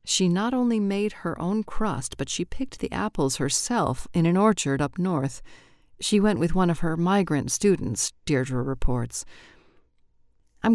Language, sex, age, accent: English, female, 40-59, American